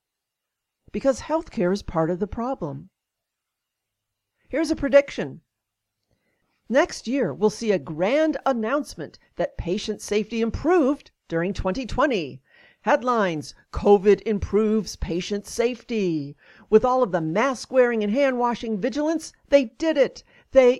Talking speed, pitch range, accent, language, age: 120 wpm, 180-255 Hz, American, English, 50-69